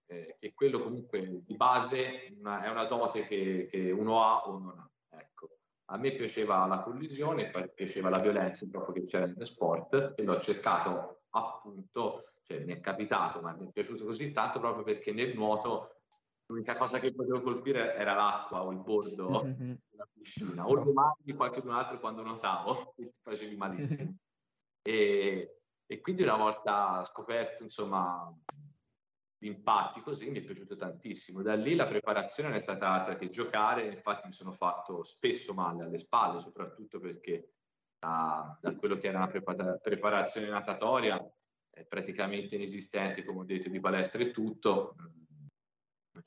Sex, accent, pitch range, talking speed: male, native, 95-150 Hz, 160 wpm